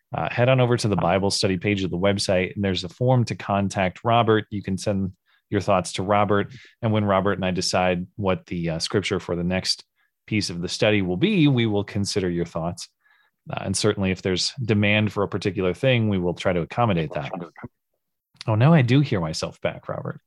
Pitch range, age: 95-120 Hz, 30-49